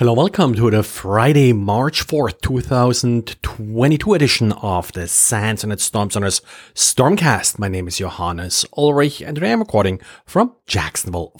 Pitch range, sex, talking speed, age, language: 115-150 Hz, male, 140 wpm, 30-49, English